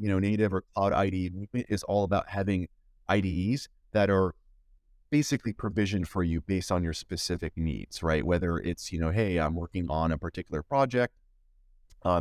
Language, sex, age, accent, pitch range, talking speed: English, male, 30-49, American, 90-110 Hz, 170 wpm